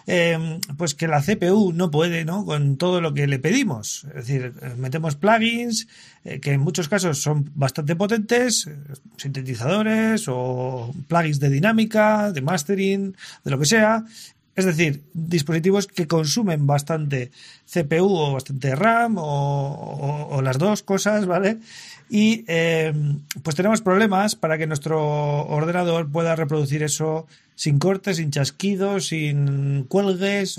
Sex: male